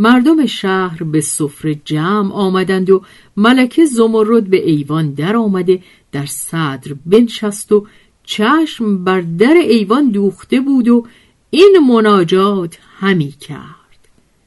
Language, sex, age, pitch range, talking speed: Persian, female, 50-69, 155-215 Hz, 115 wpm